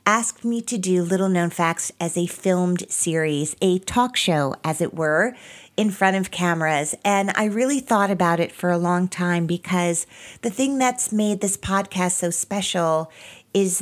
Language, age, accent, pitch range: English, 40-59, American, 170-210 Hz